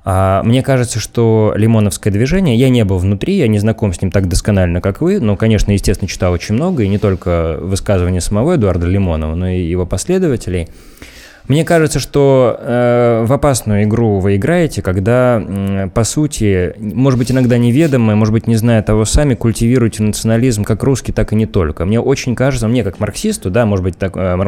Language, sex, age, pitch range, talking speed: Russian, male, 20-39, 100-125 Hz, 190 wpm